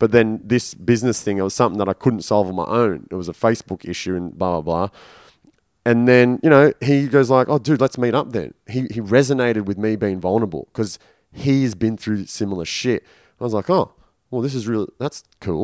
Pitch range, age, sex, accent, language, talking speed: 105-130 Hz, 30-49, male, Australian, English, 230 wpm